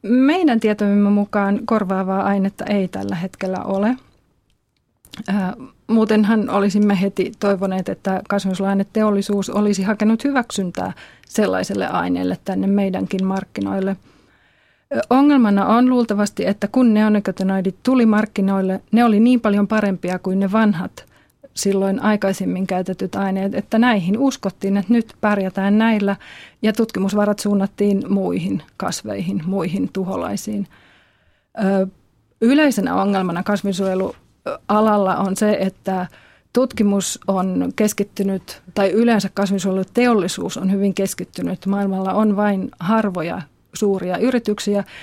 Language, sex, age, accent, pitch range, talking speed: Finnish, female, 30-49, native, 190-215 Hz, 105 wpm